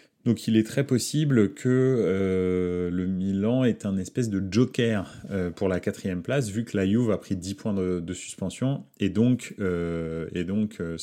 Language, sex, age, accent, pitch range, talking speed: French, male, 30-49, French, 95-120 Hz, 195 wpm